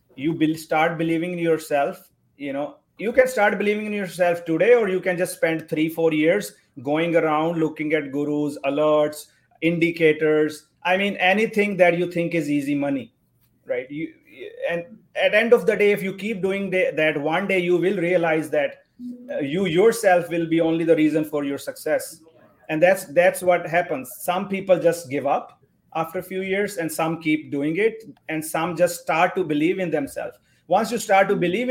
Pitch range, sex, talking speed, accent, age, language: 155-195 Hz, male, 190 wpm, Indian, 30-49, English